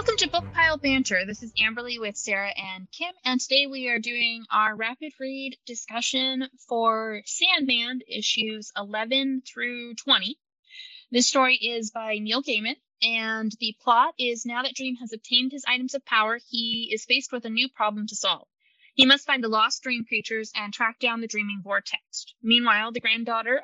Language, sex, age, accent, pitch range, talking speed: English, female, 20-39, American, 220-270 Hz, 180 wpm